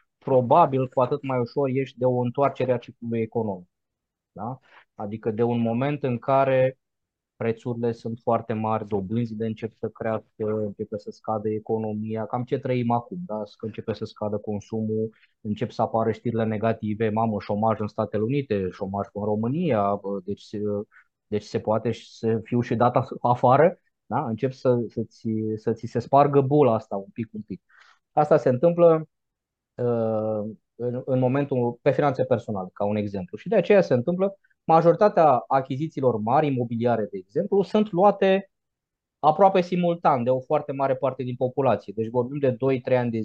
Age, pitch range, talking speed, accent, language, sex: 20-39, 110-140 Hz, 155 wpm, native, Romanian, male